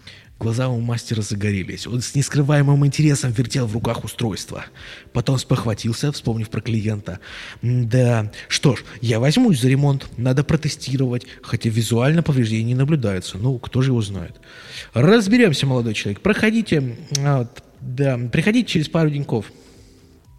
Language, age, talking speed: Russian, 20-39, 130 wpm